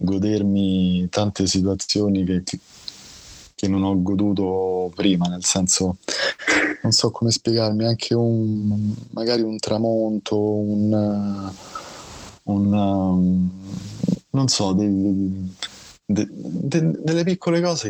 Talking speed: 105 wpm